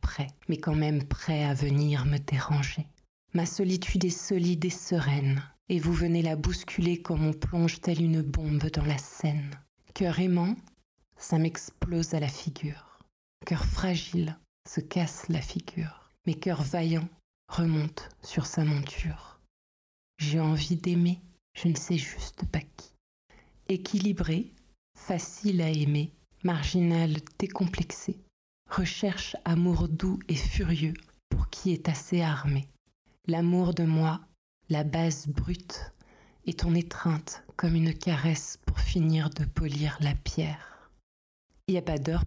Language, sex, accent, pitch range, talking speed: French, female, French, 150-175 Hz, 140 wpm